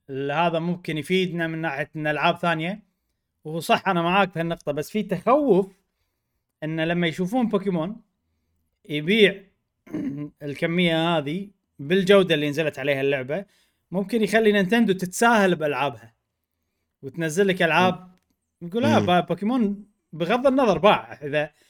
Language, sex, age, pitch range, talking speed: Arabic, male, 30-49, 140-200 Hz, 120 wpm